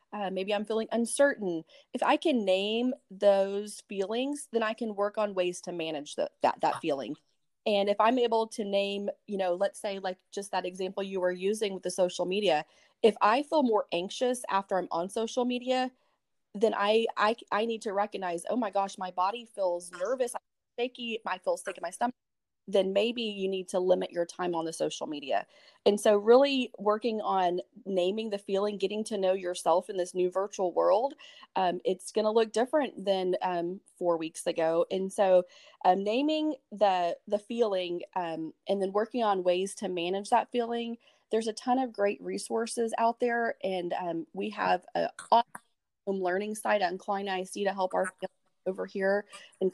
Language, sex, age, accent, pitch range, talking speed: English, female, 30-49, American, 185-230 Hz, 190 wpm